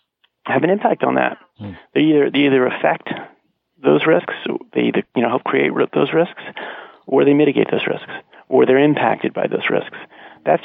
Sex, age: male, 40-59